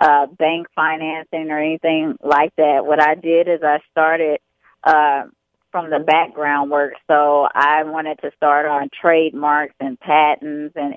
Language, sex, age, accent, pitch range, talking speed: English, female, 20-39, American, 150-170 Hz, 155 wpm